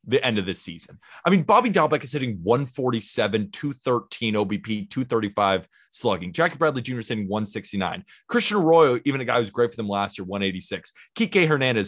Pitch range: 105-145 Hz